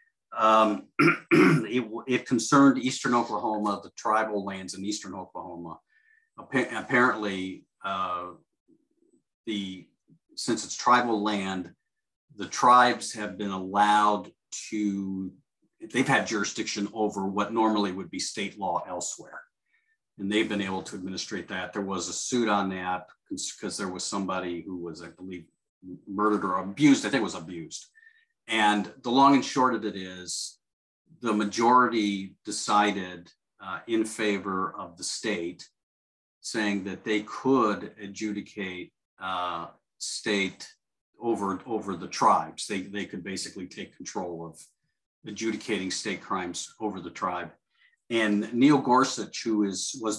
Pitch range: 95-120 Hz